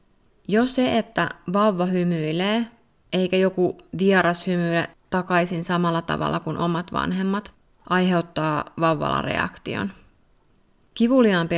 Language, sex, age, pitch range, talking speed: Finnish, female, 20-39, 160-185 Hz, 100 wpm